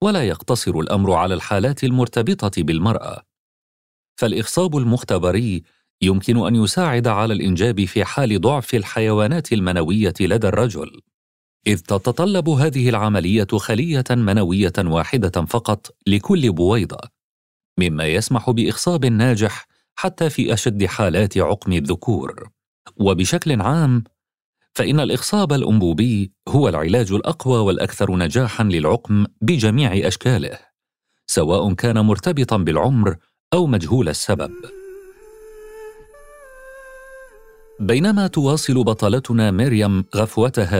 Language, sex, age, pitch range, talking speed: Arabic, male, 40-59, 100-140 Hz, 95 wpm